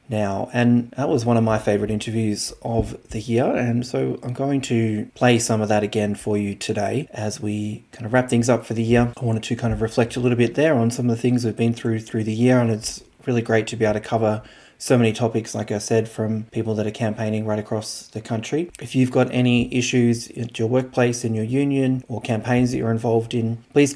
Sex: male